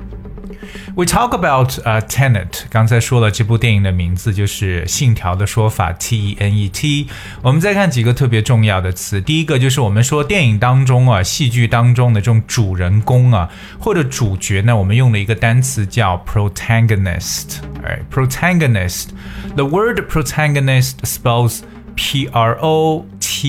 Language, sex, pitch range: Chinese, male, 105-135 Hz